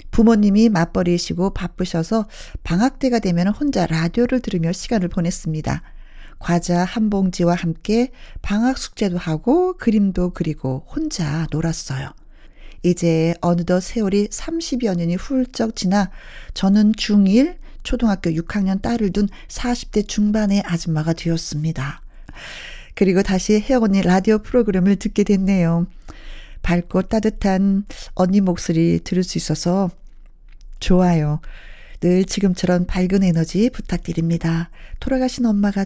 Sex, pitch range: female, 170-205 Hz